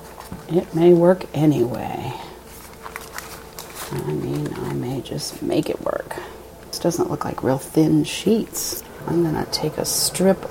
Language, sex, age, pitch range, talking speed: English, female, 40-59, 150-175 Hz, 135 wpm